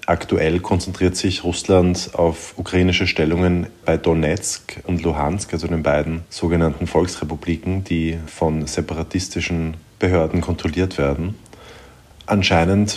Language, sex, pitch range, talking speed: German, male, 80-90 Hz, 105 wpm